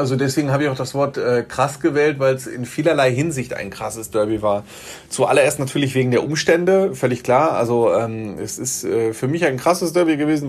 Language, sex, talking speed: German, male, 210 wpm